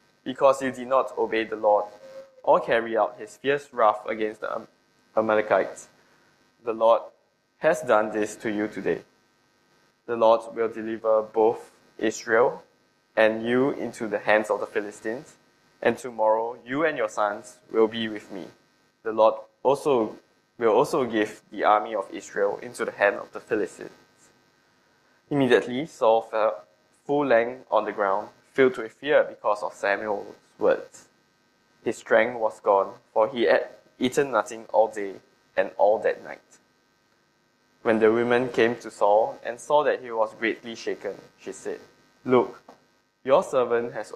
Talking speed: 155 wpm